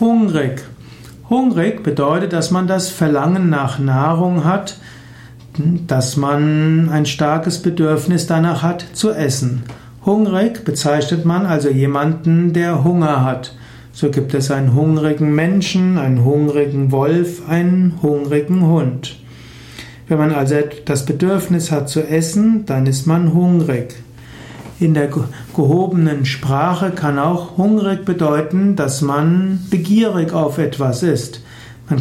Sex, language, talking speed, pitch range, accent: male, German, 125 wpm, 135-175 Hz, German